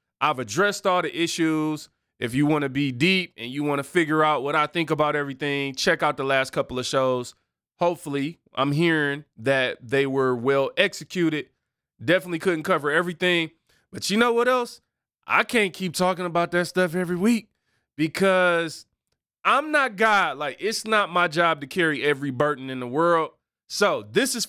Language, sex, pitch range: English, male, 145-200 Hz